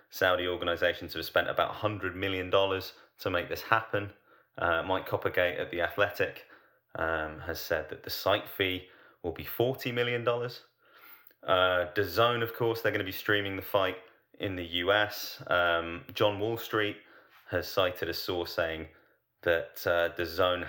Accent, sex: British, male